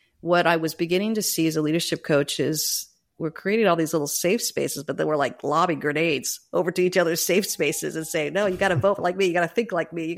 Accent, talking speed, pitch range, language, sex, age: American, 270 wpm, 155-185 Hz, English, female, 40-59